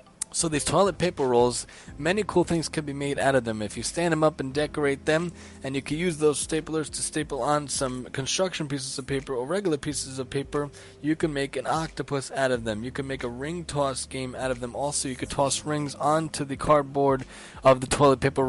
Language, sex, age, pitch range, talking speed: English, male, 20-39, 130-150 Hz, 230 wpm